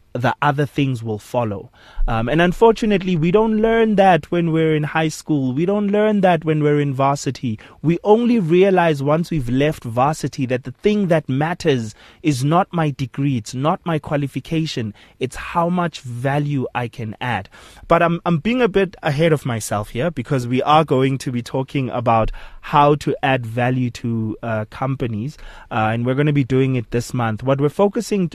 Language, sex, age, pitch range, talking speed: English, male, 20-39, 120-160 Hz, 190 wpm